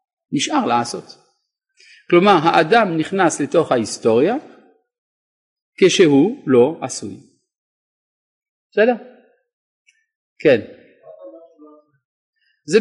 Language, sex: Hebrew, male